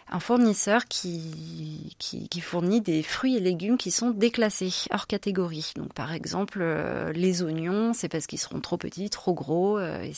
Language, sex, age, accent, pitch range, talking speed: French, female, 30-49, French, 170-210 Hz, 170 wpm